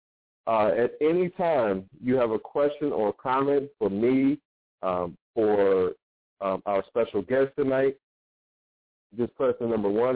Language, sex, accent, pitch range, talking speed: English, male, American, 105-120 Hz, 140 wpm